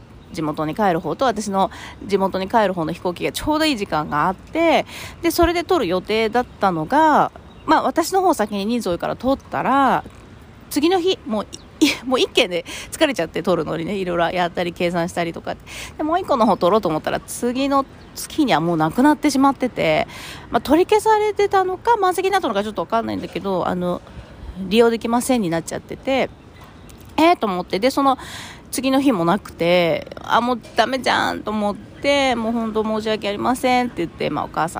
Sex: female